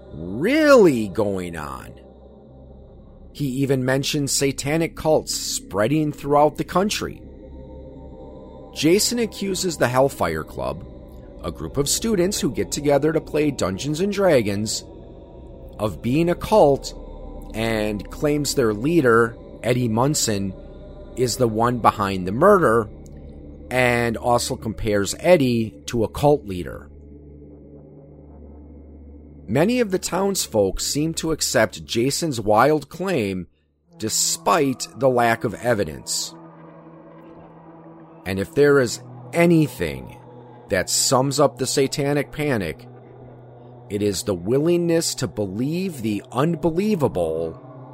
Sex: male